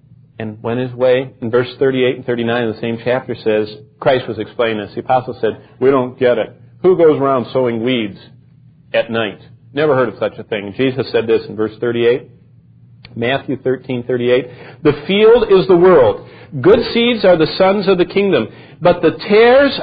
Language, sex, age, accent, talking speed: English, male, 50-69, American, 200 wpm